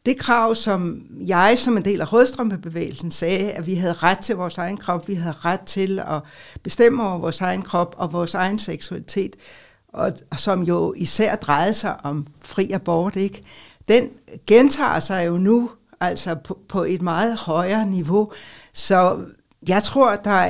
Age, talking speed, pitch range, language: 60-79, 170 wpm, 170-215 Hz, Danish